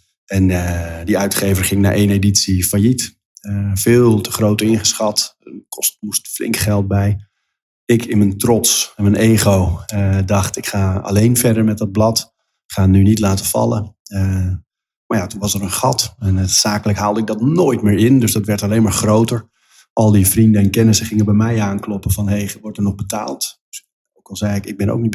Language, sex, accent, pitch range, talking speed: Dutch, male, Dutch, 100-110 Hz, 210 wpm